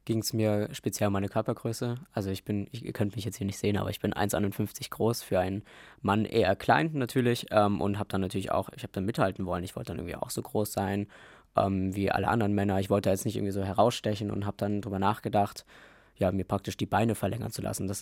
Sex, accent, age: male, German, 20-39